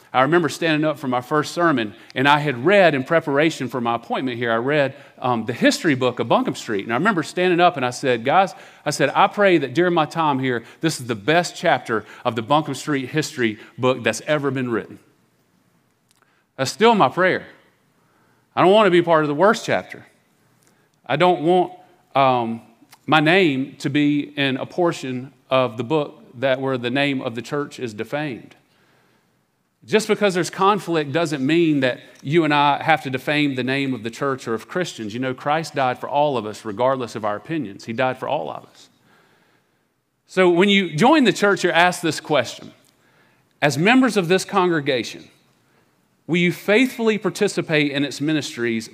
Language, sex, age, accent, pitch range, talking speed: English, male, 40-59, American, 130-175 Hz, 195 wpm